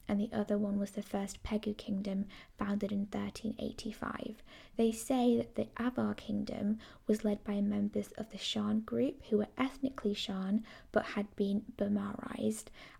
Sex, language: female, English